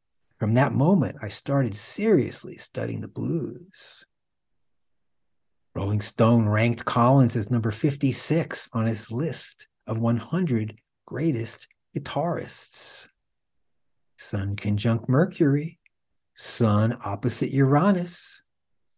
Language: English